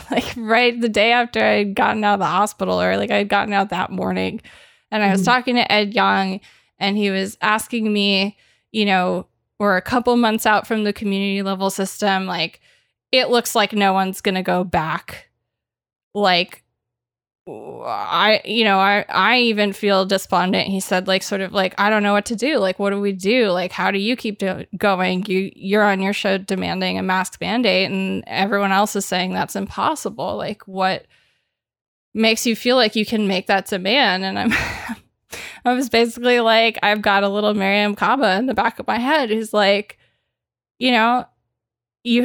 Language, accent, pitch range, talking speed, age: English, American, 190-225 Hz, 190 wpm, 20-39